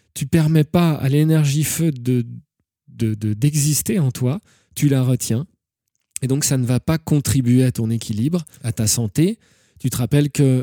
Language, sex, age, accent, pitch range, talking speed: French, male, 20-39, French, 115-145 Hz, 185 wpm